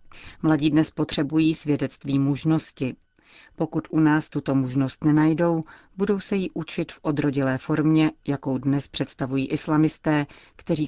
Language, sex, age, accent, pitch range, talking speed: Czech, female, 40-59, native, 135-155 Hz, 125 wpm